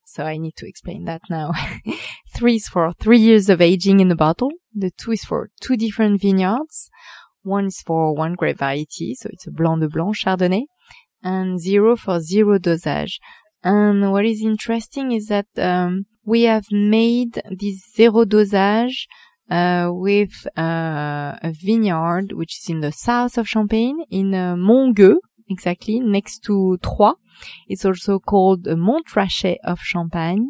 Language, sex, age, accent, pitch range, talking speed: English, female, 20-39, French, 180-220 Hz, 155 wpm